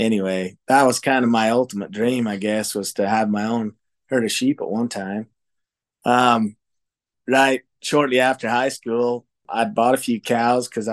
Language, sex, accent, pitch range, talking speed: English, male, American, 105-130 Hz, 185 wpm